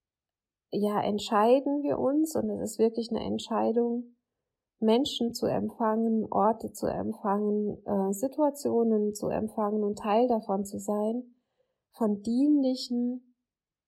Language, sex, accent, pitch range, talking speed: German, female, German, 205-235 Hz, 110 wpm